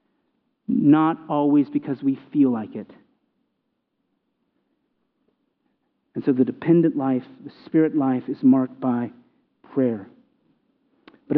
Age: 40-59